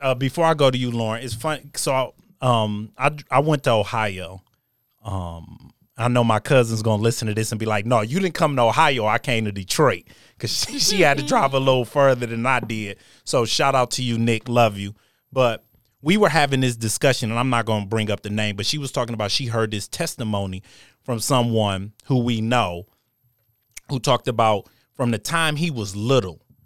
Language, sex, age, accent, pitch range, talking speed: English, male, 30-49, American, 110-135 Hz, 215 wpm